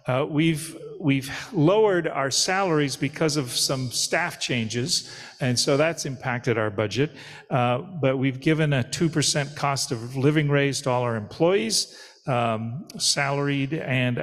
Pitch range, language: 115-150 Hz, English